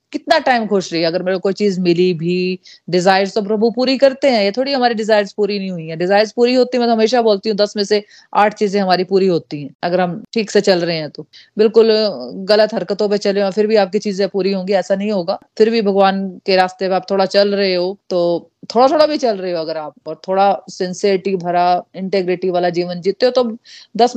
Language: Hindi